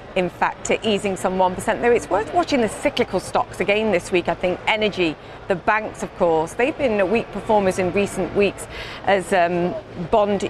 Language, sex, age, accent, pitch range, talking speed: English, female, 30-49, British, 185-225 Hz, 195 wpm